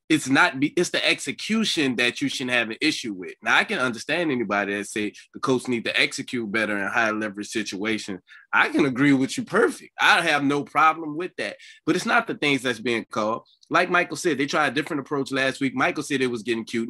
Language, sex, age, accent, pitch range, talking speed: English, male, 20-39, American, 110-145 Hz, 225 wpm